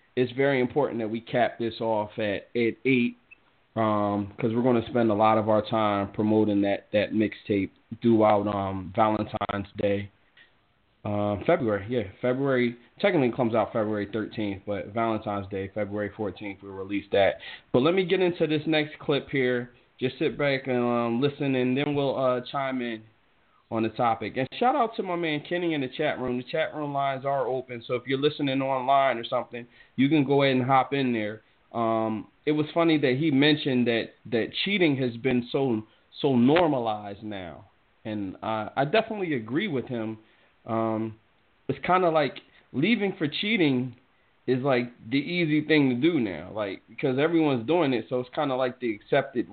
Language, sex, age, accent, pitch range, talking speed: English, male, 20-39, American, 110-140 Hz, 185 wpm